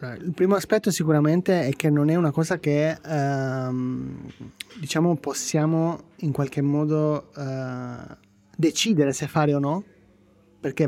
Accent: native